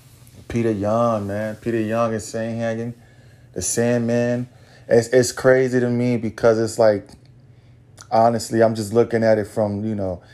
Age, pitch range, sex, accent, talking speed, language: 20-39, 110-125 Hz, male, American, 155 wpm, English